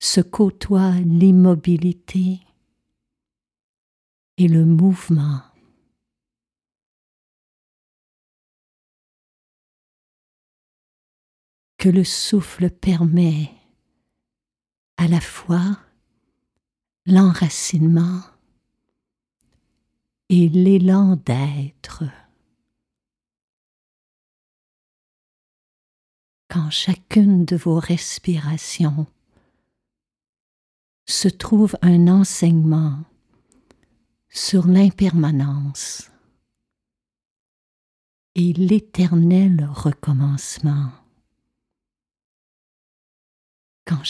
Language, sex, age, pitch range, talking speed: French, female, 50-69, 150-185 Hz, 45 wpm